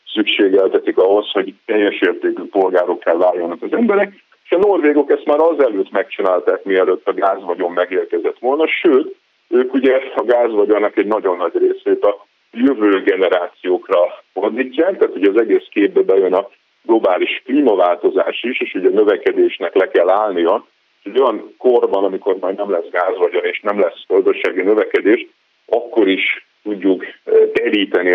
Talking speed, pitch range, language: 145 wpm, 335-445 Hz, Hungarian